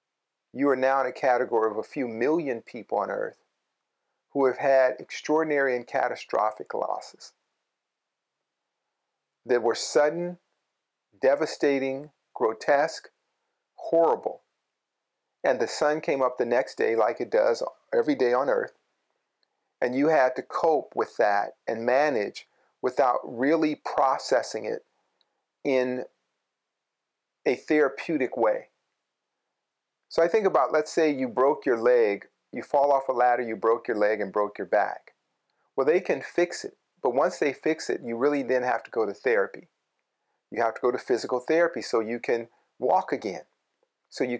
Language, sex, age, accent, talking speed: English, male, 40-59, American, 155 wpm